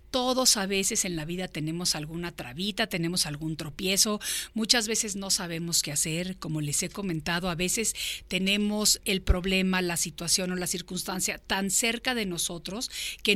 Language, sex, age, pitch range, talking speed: Spanish, female, 50-69, 175-225 Hz, 165 wpm